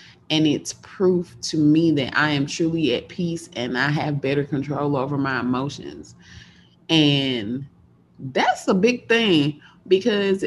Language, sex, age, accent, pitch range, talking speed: English, female, 20-39, American, 150-235 Hz, 145 wpm